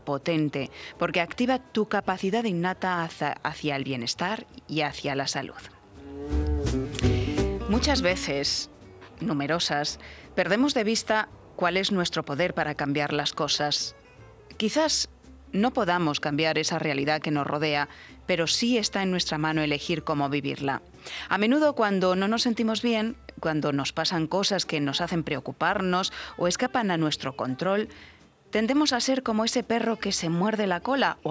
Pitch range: 145-200 Hz